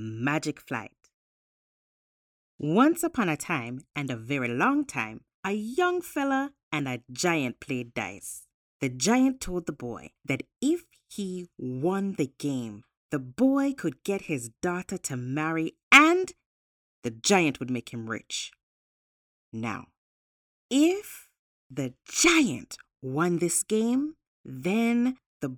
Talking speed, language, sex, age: 125 wpm, English, female, 30-49